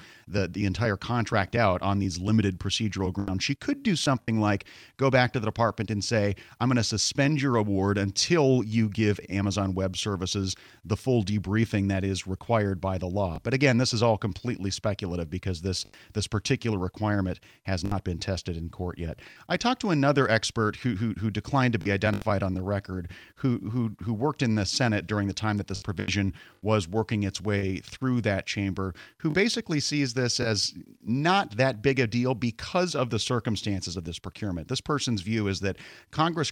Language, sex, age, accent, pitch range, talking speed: English, male, 30-49, American, 95-120 Hz, 200 wpm